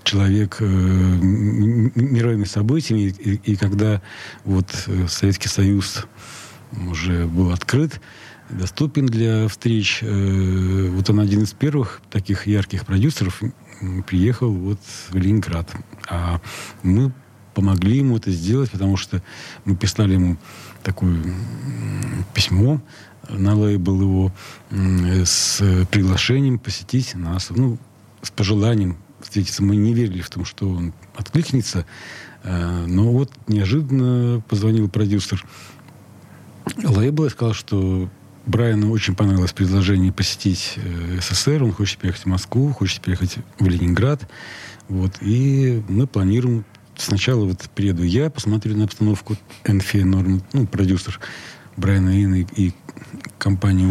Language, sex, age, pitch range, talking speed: Russian, male, 40-59, 95-115 Hz, 115 wpm